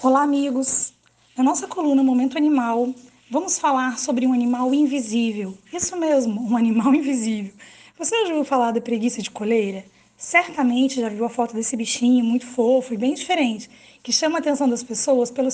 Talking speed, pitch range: 175 wpm, 230-280 Hz